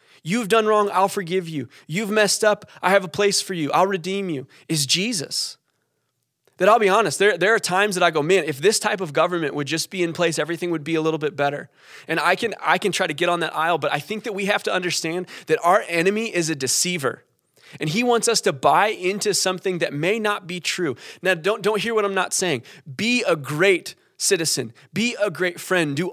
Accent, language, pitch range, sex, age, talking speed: American, English, 155-195 Hz, male, 20-39, 240 wpm